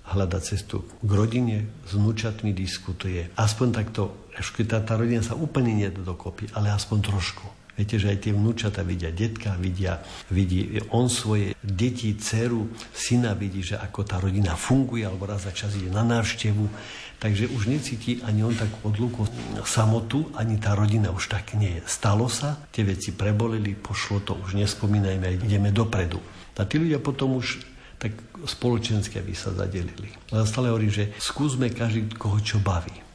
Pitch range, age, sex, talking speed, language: 100-110 Hz, 50-69, male, 165 wpm, Slovak